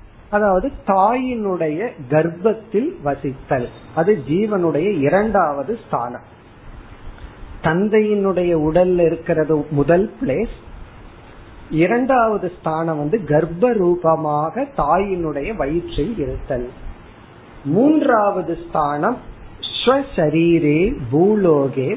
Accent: native